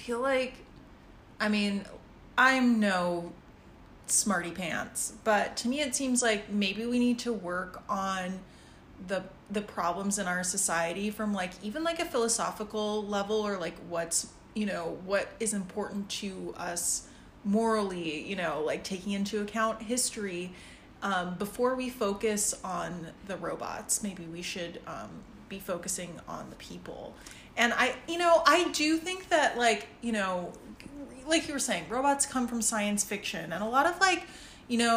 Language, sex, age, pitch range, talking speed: English, female, 30-49, 195-245 Hz, 165 wpm